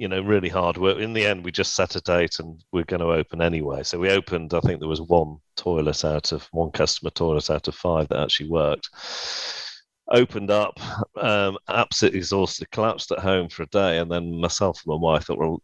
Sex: male